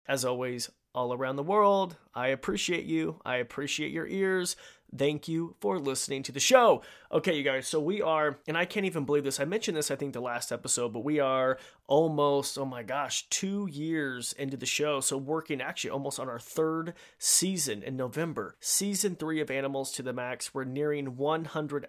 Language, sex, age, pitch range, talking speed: English, male, 30-49, 125-155 Hz, 195 wpm